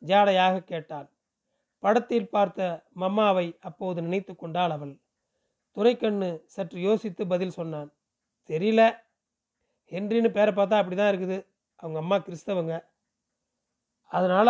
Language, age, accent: Tamil, 40-59, native